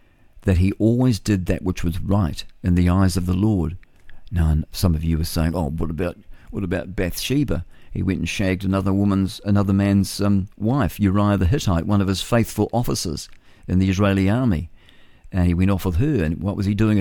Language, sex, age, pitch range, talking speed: English, male, 50-69, 85-100 Hz, 210 wpm